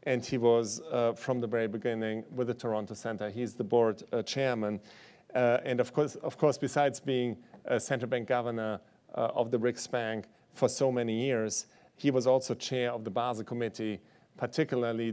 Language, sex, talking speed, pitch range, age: English, male, 185 wpm, 115-130 Hz, 40-59